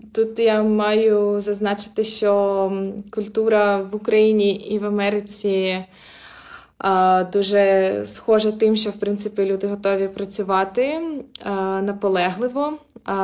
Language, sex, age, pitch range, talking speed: Ukrainian, female, 20-39, 190-215 Hz, 95 wpm